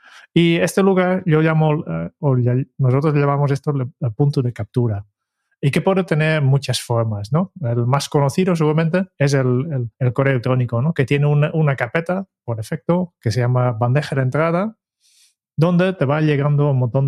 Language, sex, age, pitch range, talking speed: Spanish, male, 30-49, 125-160 Hz, 170 wpm